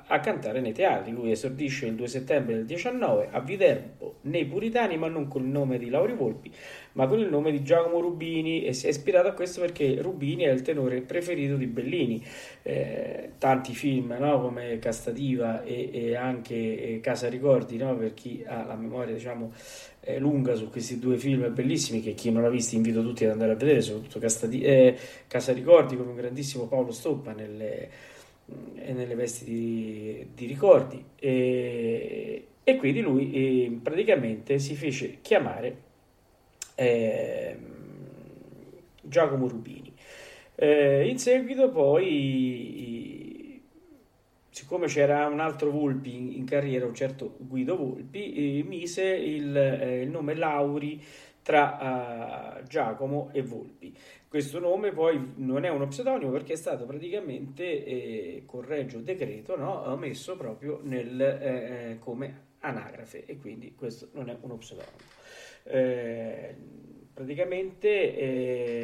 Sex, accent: male, native